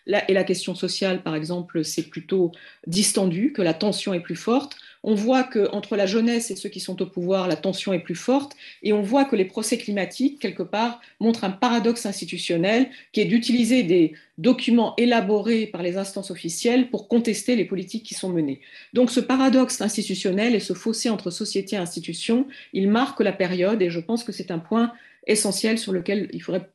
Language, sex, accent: French, female, French